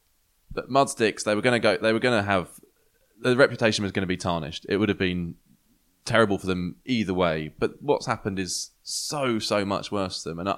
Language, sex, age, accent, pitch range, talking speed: English, male, 20-39, British, 85-105 Hz, 225 wpm